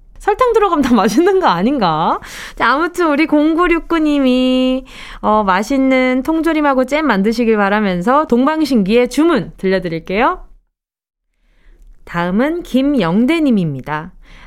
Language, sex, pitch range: Korean, female, 205-295 Hz